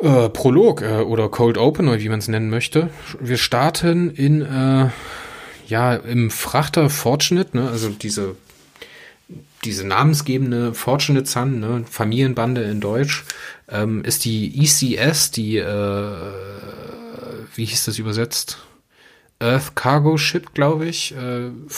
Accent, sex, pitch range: German, male, 110-140 Hz